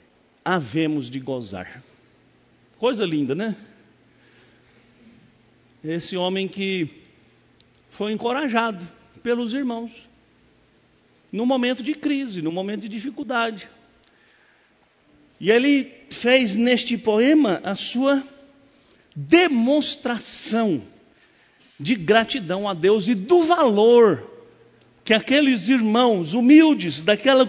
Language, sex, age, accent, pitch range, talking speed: Portuguese, male, 60-79, Brazilian, 215-280 Hz, 90 wpm